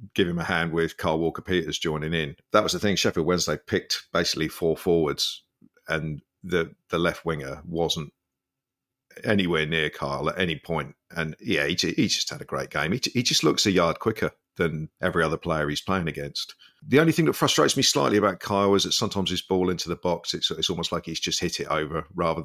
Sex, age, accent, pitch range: male, 50-69, British, 80-90 Hz